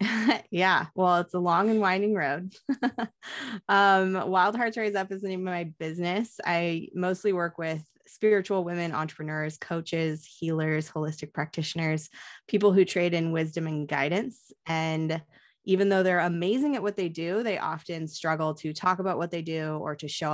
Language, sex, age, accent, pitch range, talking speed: English, female, 20-39, American, 150-185 Hz, 170 wpm